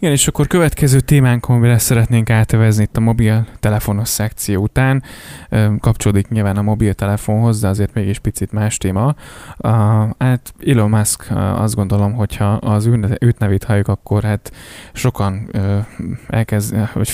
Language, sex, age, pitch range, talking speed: Hungarian, male, 10-29, 105-120 Hz, 135 wpm